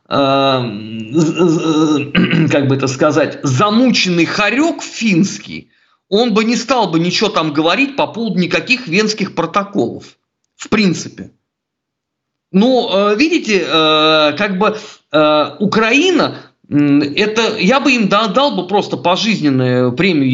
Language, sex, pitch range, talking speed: Russian, male, 165-255 Hz, 105 wpm